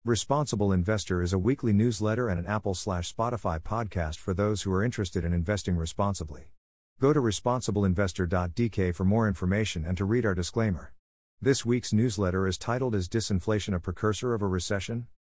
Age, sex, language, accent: 50-69, male, English, American